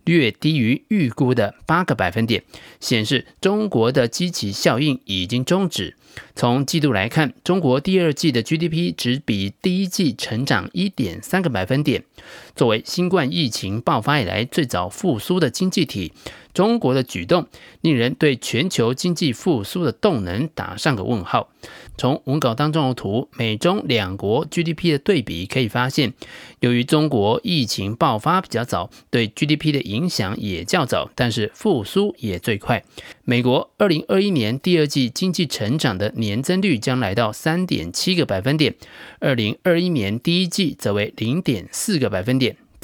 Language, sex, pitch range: Chinese, male, 115-170 Hz